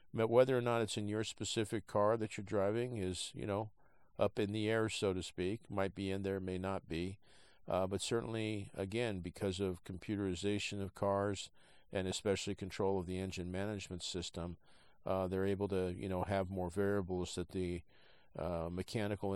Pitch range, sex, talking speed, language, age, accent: 90-110 Hz, male, 180 wpm, English, 50-69, American